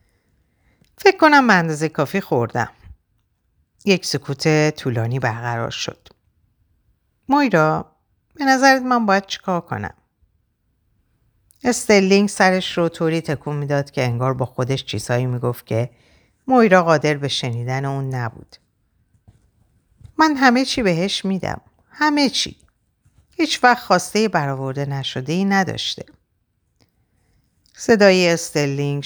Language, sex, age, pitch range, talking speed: Persian, female, 50-69, 115-180 Hz, 105 wpm